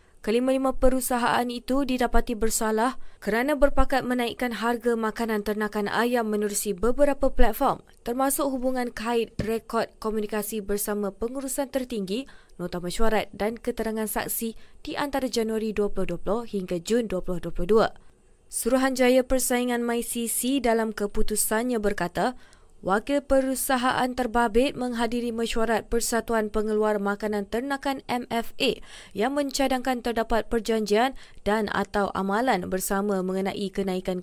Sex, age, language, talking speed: female, 20-39, Malay, 110 wpm